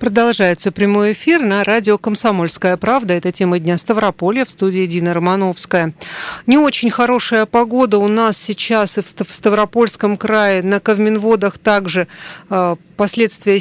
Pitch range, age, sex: 185-215 Hz, 40-59, female